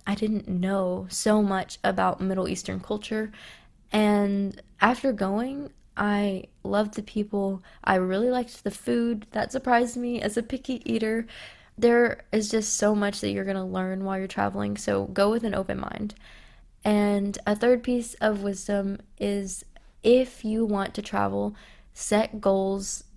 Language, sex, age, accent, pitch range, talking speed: English, female, 20-39, American, 185-215 Hz, 155 wpm